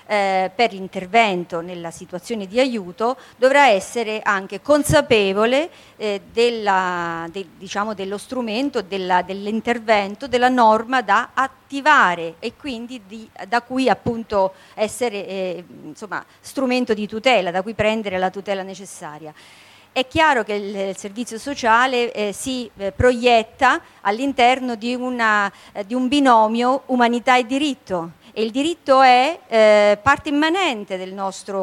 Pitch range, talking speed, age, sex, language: 195-255 Hz, 120 wpm, 40-59, female, Italian